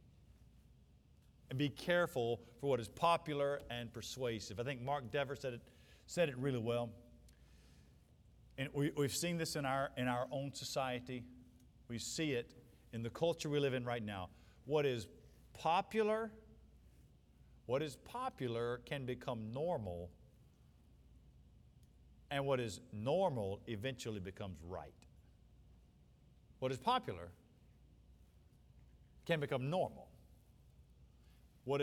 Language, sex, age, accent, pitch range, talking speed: English, male, 50-69, American, 115-160 Hz, 120 wpm